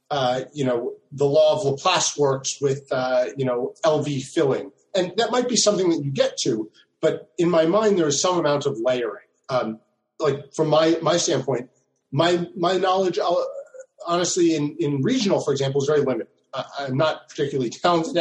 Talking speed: 185 wpm